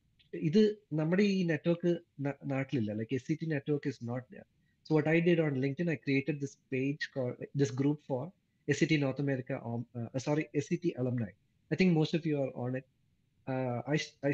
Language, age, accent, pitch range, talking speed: Malayalam, 20-39, native, 125-160 Hz, 175 wpm